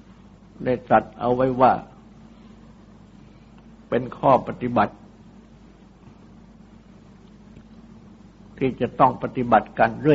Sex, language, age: male, Thai, 60-79